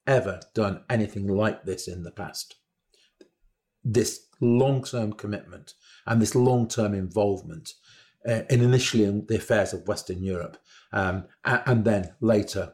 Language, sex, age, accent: English, male, 40-59, British